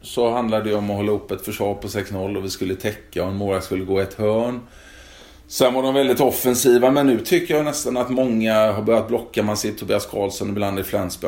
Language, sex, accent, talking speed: Swedish, male, native, 230 wpm